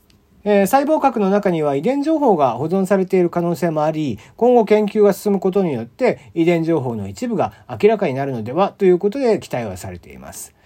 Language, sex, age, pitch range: Japanese, male, 40-59, 135-215 Hz